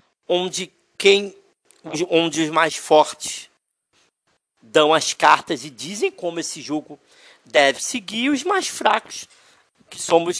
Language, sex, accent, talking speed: Portuguese, male, Brazilian, 125 wpm